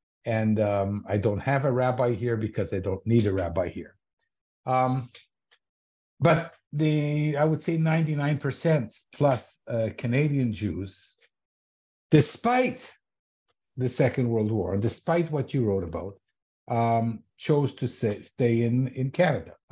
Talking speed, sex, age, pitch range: 135 wpm, male, 50-69, 105-145 Hz